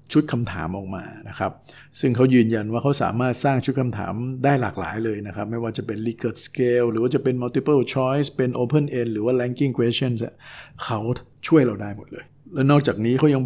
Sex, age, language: male, 60-79, Thai